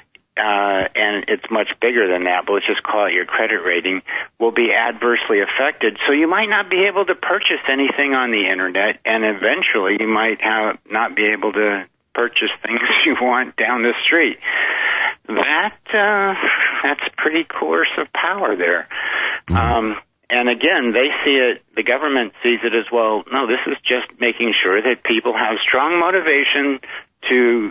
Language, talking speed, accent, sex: English, 170 wpm, American, male